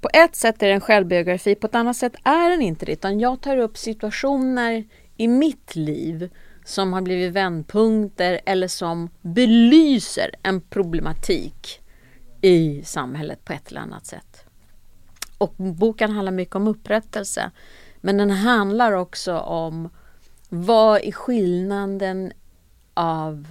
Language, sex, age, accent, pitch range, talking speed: English, female, 40-59, Swedish, 170-220 Hz, 135 wpm